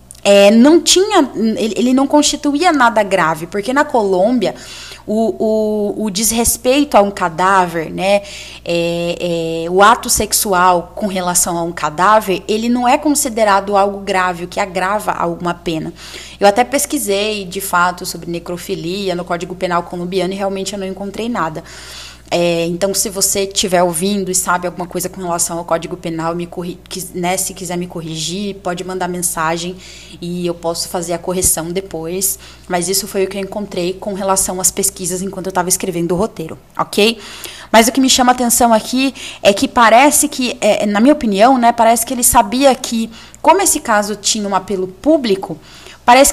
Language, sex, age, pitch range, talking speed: Portuguese, female, 20-39, 175-225 Hz, 175 wpm